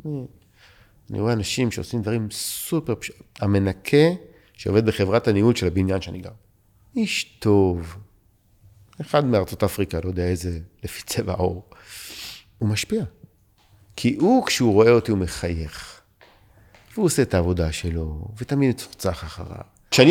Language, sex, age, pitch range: Hebrew, male, 50-69, 95-125 Hz